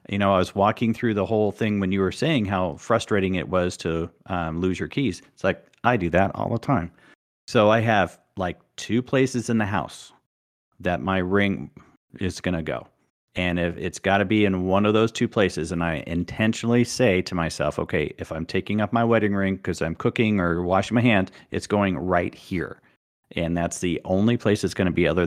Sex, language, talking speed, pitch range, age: male, English, 220 wpm, 85-105 Hz, 40-59